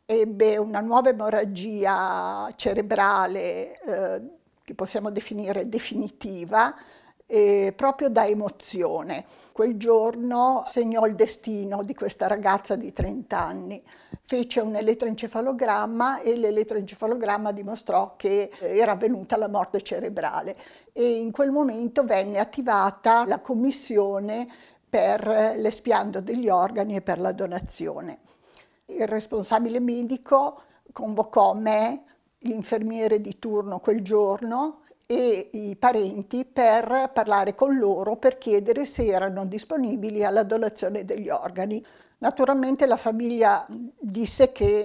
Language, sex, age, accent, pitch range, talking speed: Italian, female, 50-69, native, 205-245 Hz, 110 wpm